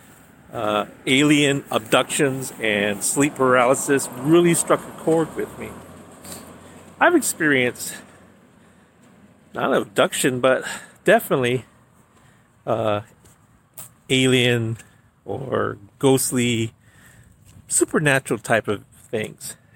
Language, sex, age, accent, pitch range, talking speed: English, male, 40-59, American, 110-135 Hz, 80 wpm